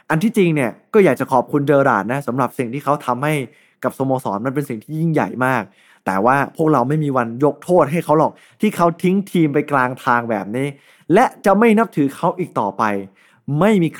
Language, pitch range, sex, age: Thai, 130-165 Hz, male, 20-39